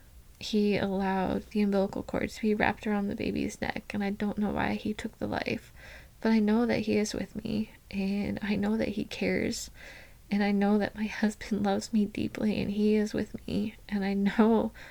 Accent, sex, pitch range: American, female, 190-215 Hz